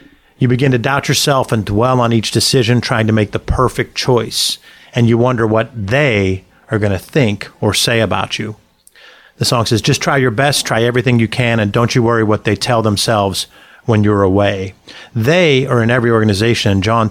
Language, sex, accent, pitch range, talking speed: English, male, American, 105-120 Hz, 205 wpm